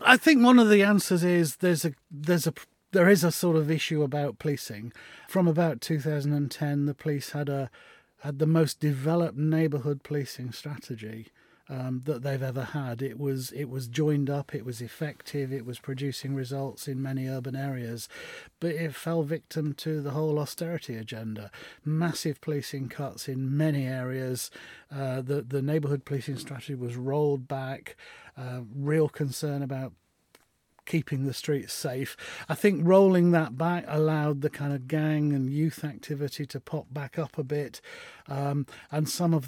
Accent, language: British, English